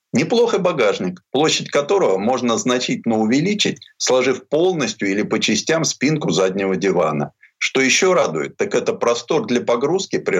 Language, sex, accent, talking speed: Russian, male, native, 140 wpm